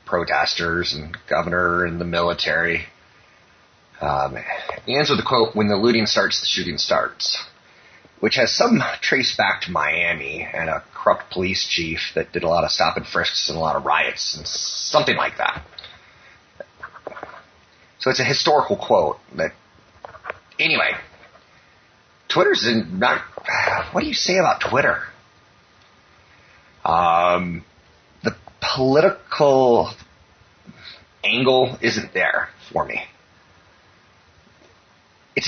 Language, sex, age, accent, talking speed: English, male, 30-49, American, 120 wpm